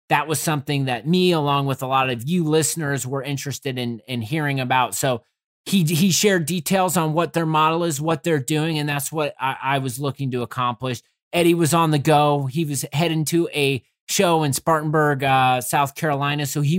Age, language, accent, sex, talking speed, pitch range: 30-49, English, American, male, 205 wpm, 135-165 Hz